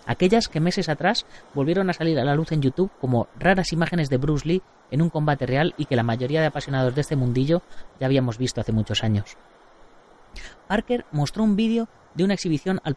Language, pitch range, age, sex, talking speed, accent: Spanish, 125-175 Hz, 30-49, female, 210 wpm, Spanish